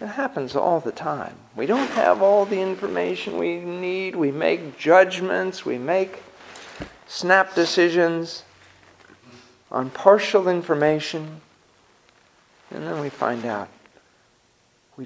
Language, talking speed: English, 115 wpm